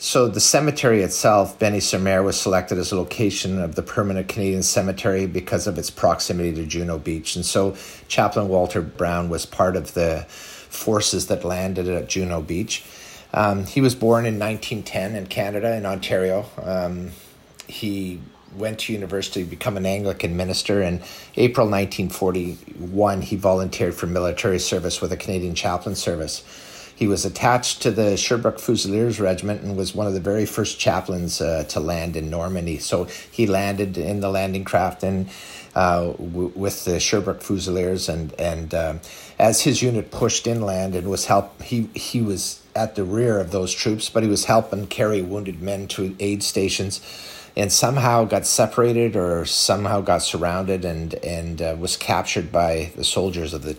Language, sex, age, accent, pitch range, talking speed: English, male, 50-69, American, 90-105 Hz, 170 wpm